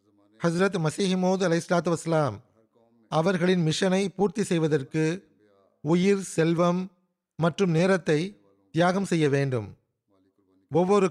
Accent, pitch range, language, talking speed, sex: native, 145-190 Hz, Tamil, 90 wpm, male